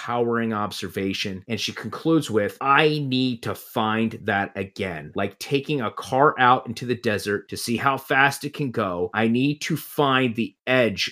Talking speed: 175 wpm